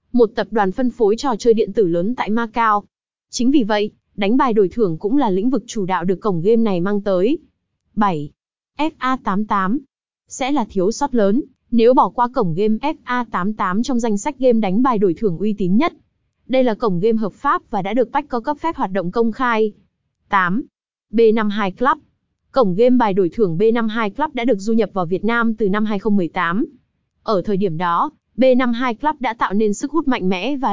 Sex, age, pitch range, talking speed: female, 20-39, 200-250 Hz, 205 wpm